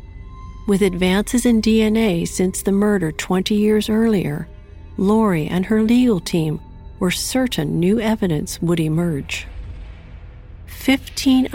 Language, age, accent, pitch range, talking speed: English, 40-59, American, 160-215 Hz, 115 wpm